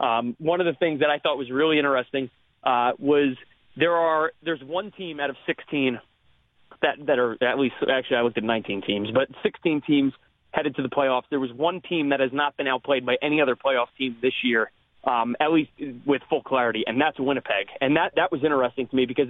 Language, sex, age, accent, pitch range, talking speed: English, male, 30-49, American, 130-155 Hz, 225 wpm